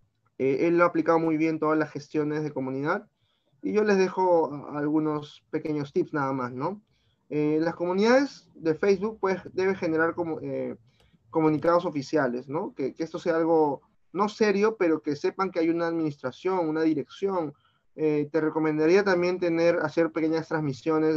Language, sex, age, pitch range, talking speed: Spanish, male, 30-49, 145-175 Hz, 165 wpm